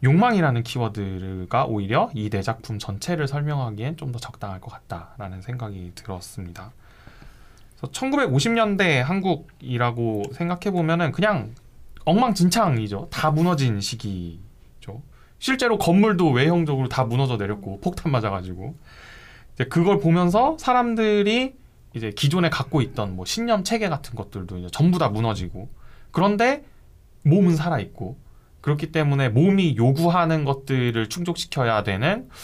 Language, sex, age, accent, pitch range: Korean, male, 20-39, native, 105-170 Hz